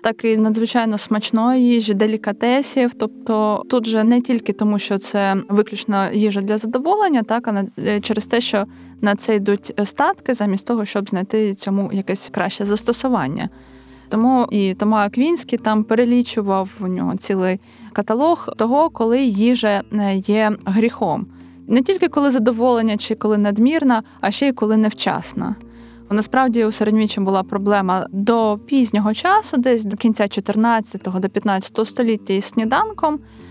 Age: 20-39